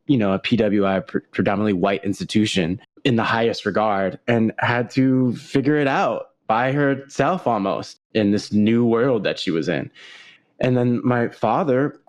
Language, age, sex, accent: English, 20-39, male, American